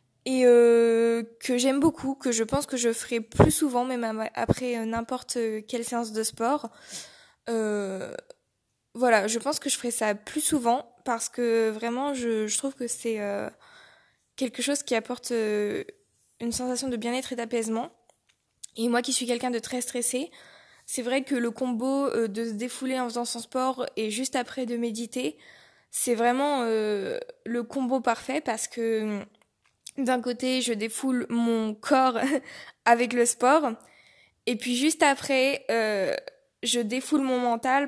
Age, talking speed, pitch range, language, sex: 20-39, 160 wpm, 230-260 Hz, French, female